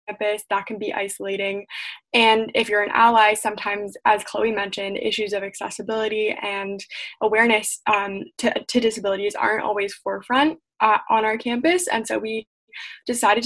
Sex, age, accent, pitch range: female, 10-29, American, 200-230 Hz